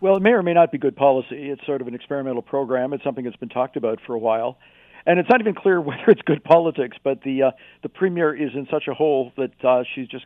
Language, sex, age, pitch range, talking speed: English, male, 50-69, 130-155 Hz, 275 wpm